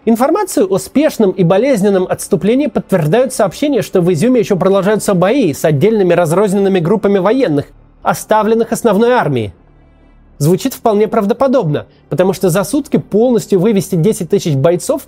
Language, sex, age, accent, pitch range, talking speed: Russian, male, 30-49, native, 180-235 Hz, 135 wpm